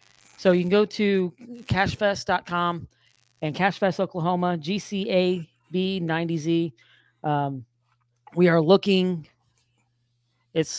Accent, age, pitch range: American, 40-59, 150-175 Hz